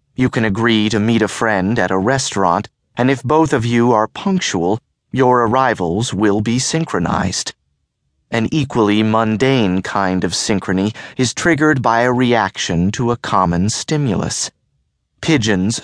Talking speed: 145 wpm